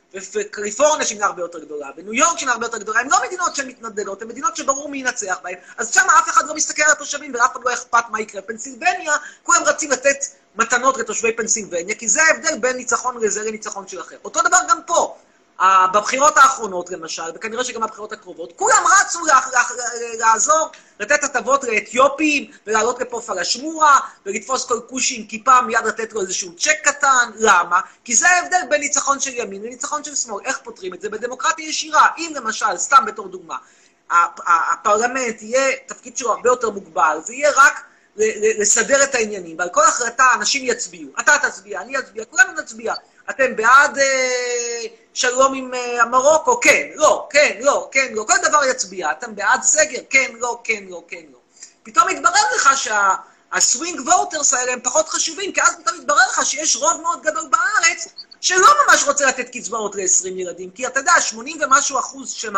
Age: 30-49